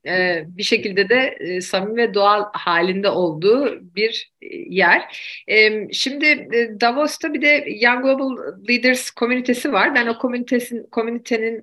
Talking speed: 115 wpm